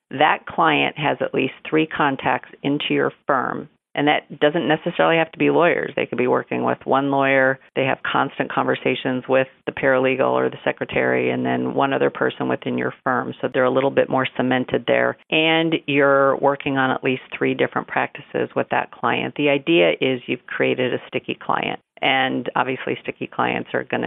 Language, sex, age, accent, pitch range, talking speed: English, female, 40-59, American, 125-165 Hz, 190 wpm